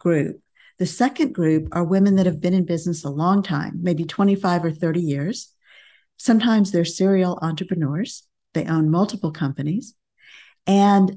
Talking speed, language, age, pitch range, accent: 150 wpm, English, 50-69, 165-195 Hz, American